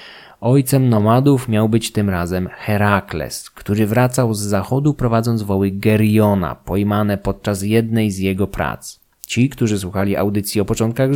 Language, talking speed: Polish, 140 wpm